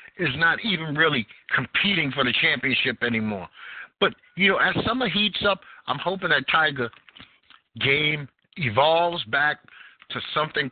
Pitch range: 125-175 Hz